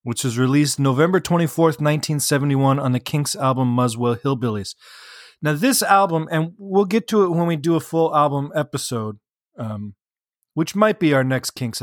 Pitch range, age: 125-160 Hz, 30-49